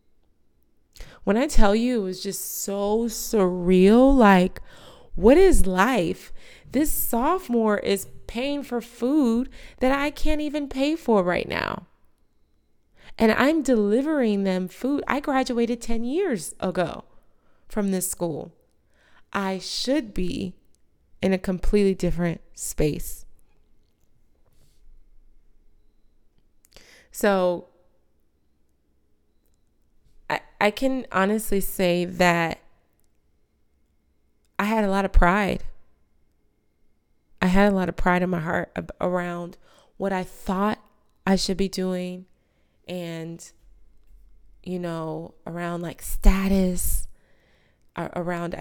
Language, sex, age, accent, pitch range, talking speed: English, female, 20-39, American, 175-220 Hz, 105 wpm